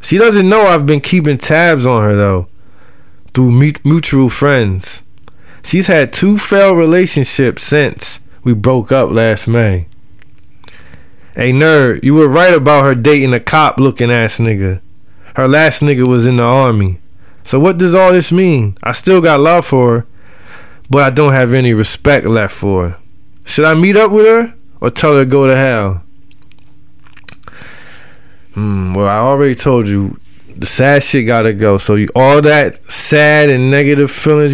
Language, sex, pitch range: English, male, 100-150 Hz